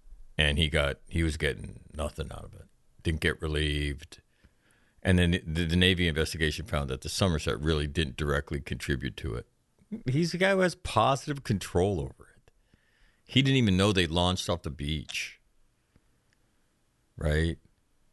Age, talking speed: 50-69, 160 wpm